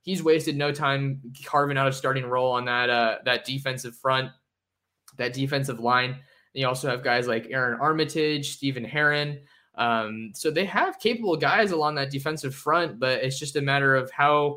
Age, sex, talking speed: 20-39, male, 185 wpm